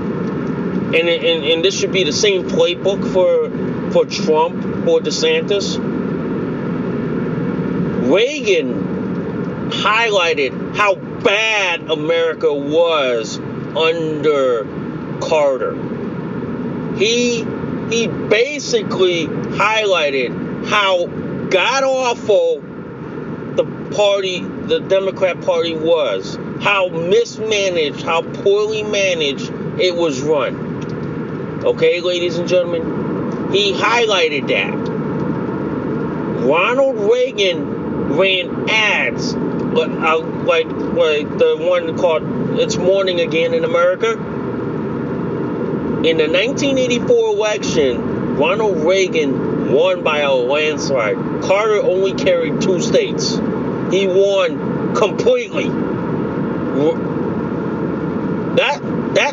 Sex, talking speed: male, 85 wpm